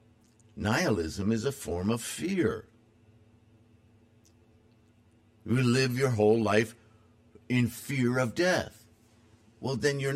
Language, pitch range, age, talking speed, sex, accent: English, 110-115 Hz, 50-69, 105 wpm, male, American